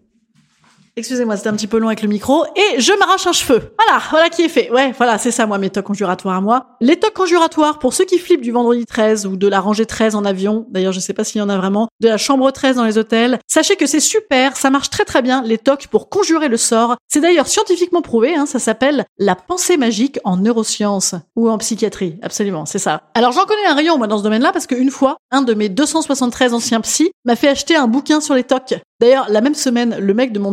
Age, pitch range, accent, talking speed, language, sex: 30-49, 215-290 Hz, French, 255 wpm, French, female